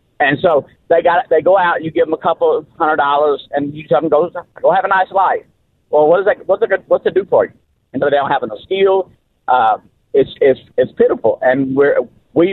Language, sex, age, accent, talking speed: English, male, 50-69, American, 240 wpm